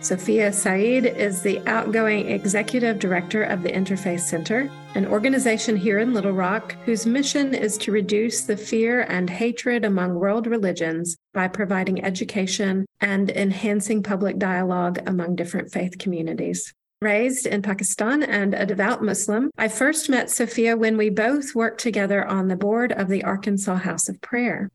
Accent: American